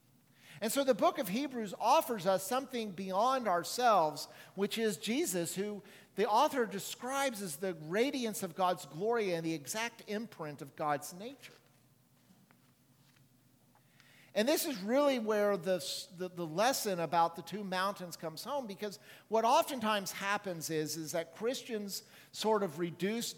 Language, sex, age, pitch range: English, male, 50-69, 155-220 Hz